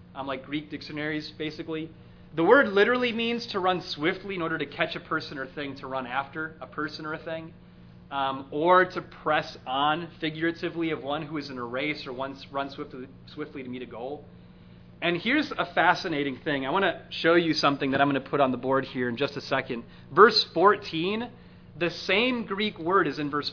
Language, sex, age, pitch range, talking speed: English, male, 30-49, 130-180 Hz, 215 wpm